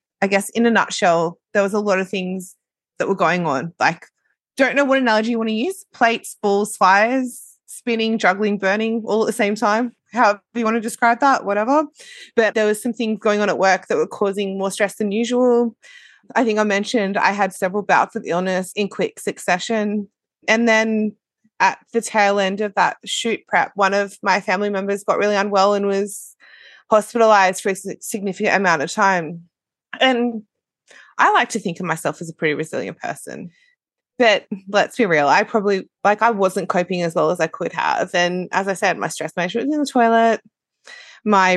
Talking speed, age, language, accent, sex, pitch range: 200 wpm, 20-39, English, Australian, female, 185-225 Hz